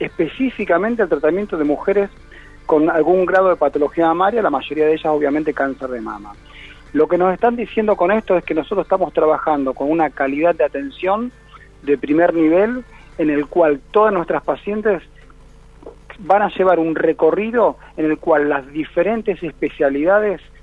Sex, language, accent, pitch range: male, Spanish, Argentinian, 150-205 Hz